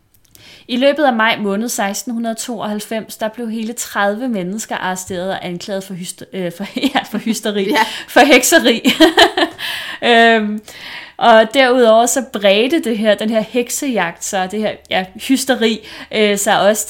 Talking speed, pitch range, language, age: 135 wpm, 190-230 Hz, Danish, 20-39